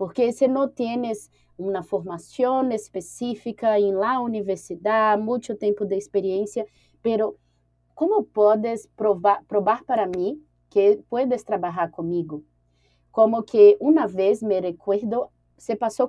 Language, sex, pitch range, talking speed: Spanish, female, 185-240 Hz, 125 wpm